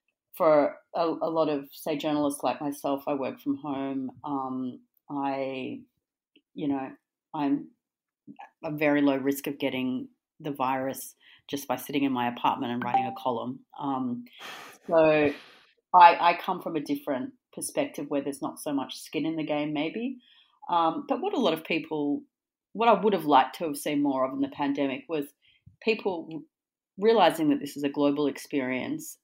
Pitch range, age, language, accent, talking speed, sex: 140-210 Hz, 40-59, English, Australian, 170 wpm, female